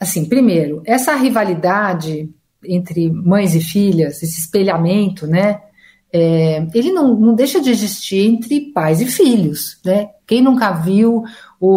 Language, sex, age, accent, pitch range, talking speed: Portuguese, female, 50-69, Brazilian, 185-230 Hz, 135 wpm